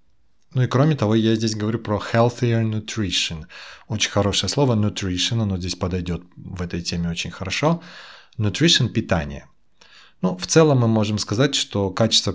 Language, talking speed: Russian, 155 wpm